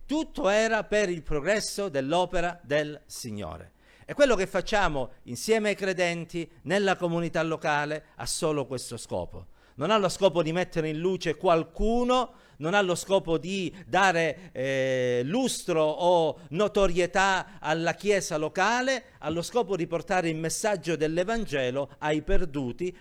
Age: 50-69